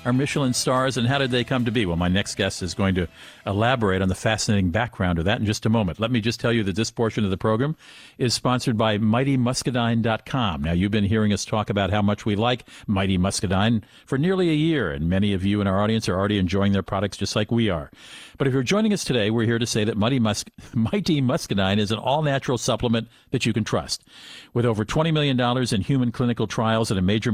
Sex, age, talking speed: male, 50-69, 240 wpm